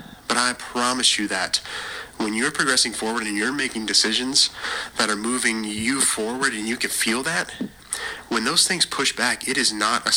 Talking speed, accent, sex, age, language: 190 wpm, American, male, 30-49, English